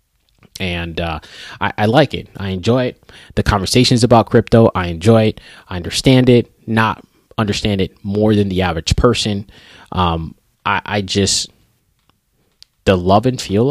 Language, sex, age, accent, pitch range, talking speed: English, male, 20-39, American, 95-115 Hz, 155 wpm